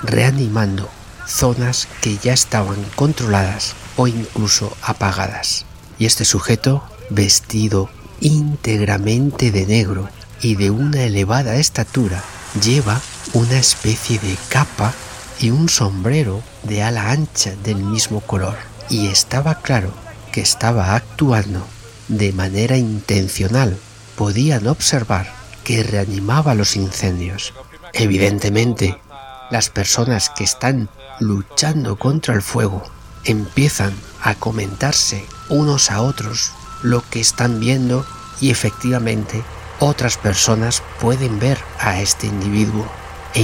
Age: 50-69